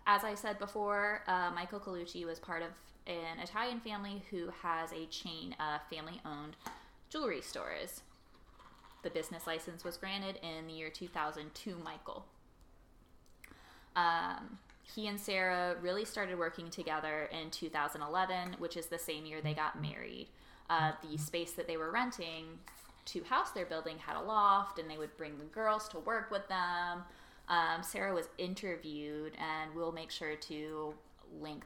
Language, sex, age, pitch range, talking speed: English, female, 20-39, 155-180 Hz, 160 wpm